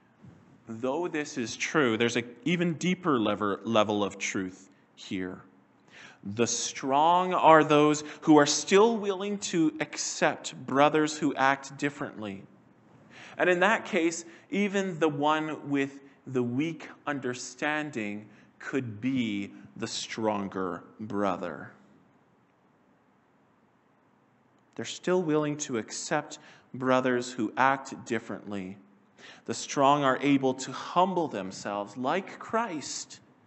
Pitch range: 105-150 Hz